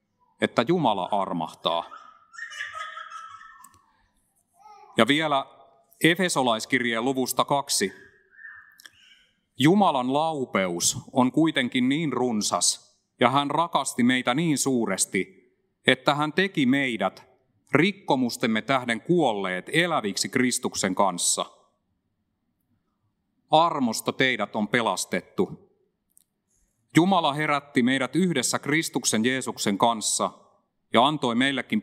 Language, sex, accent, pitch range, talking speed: Finnish, male, native, 110-170 Hz, 85 wpm